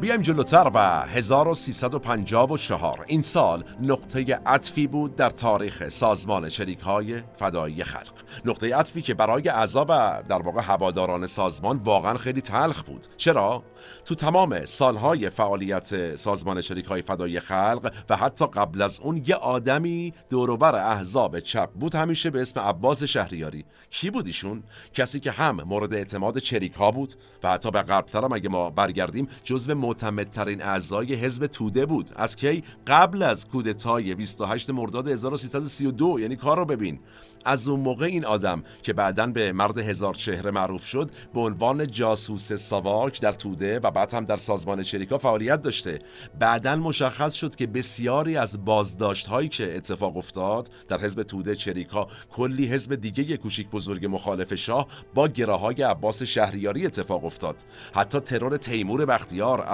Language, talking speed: Persian, 150 wpm